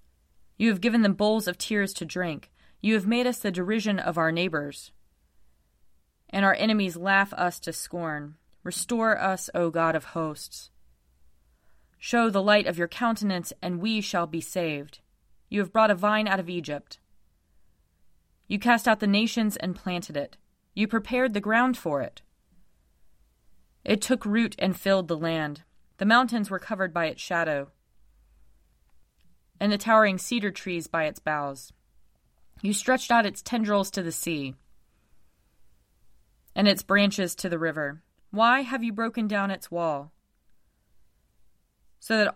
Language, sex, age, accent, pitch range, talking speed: English, female, 30-49, American, 145-210 Hz, 155 wpm